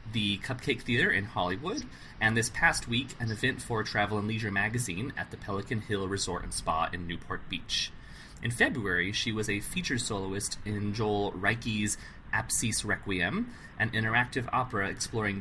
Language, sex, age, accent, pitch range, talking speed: English, male, 30-49, American, 100-120 Hz, 160 wpm